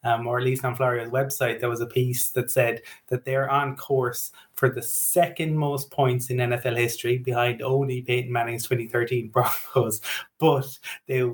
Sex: male